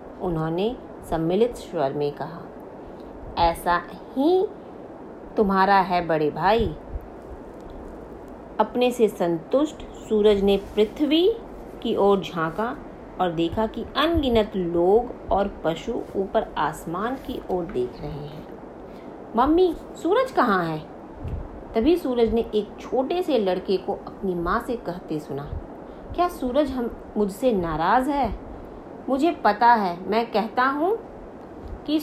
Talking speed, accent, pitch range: 120 wpm, native, 185-260 Hz